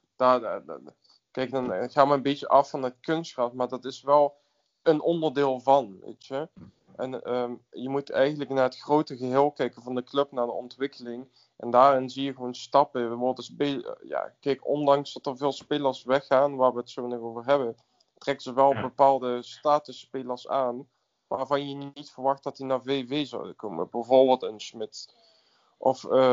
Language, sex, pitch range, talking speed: Dutch, male, 125-140 Hz, 170 wpm